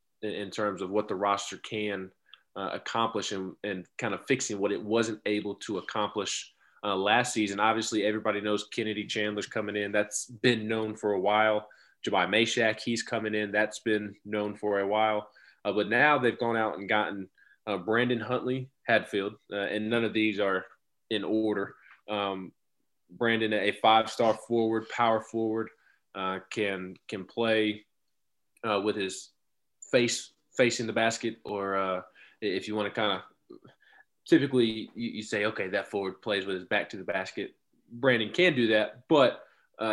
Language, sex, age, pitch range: English, male, 20-39, 100-115 Hz